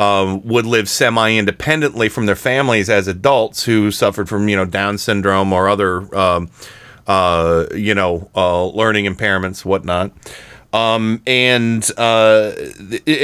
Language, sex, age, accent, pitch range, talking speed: English, male, 30-49, American, 105-135 Hz, 135 wpm